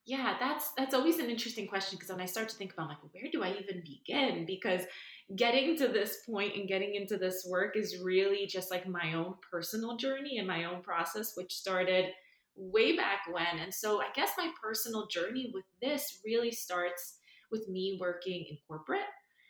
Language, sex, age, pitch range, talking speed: English, female, 20-39, 170-215 Hz, 195 wpm